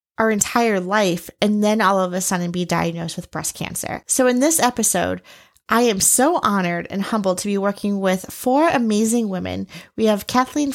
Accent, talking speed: American, 190 wpm